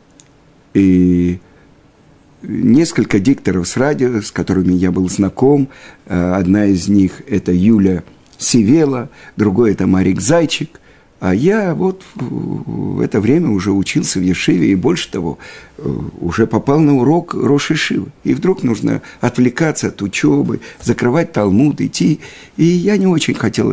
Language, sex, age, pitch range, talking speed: Russian, male, 50-69, 105-170 Hz, 135 wpm